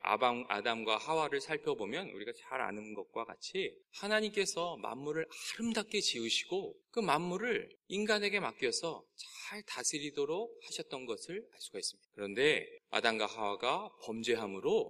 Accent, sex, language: native, male, Korean